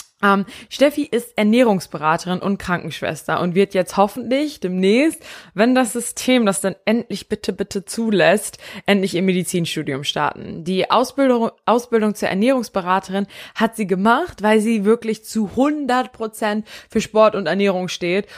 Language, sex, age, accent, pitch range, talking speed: German, female, 20-39, German, 180-225 Hz, 135 wpm